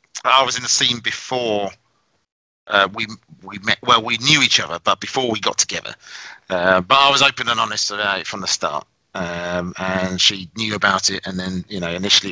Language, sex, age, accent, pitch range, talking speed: English, male, 30-49, British, 100-125 Hz, 210 wpm